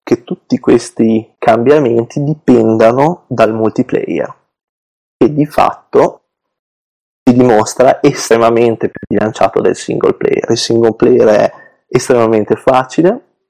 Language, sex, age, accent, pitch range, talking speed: Italian, male, 20-39, native, 115-140 Hz, 105 wpm